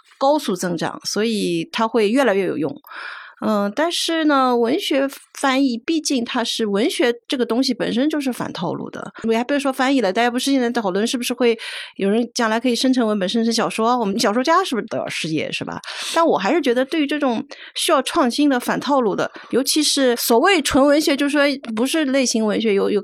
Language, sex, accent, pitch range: Chinese, female, native, 210-285 Hz